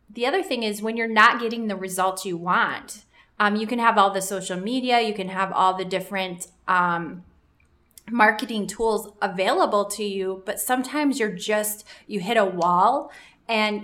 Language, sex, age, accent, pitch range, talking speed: English, female, 20-39, American, 185-225 Hz, 180 wpm